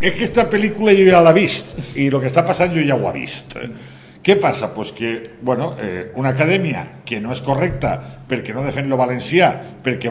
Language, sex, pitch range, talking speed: Spanish, male, 125-170 Hz, 200 wpm